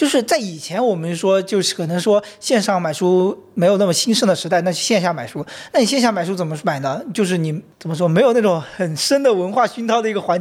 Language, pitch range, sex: Chinese, 170-210 Hz, male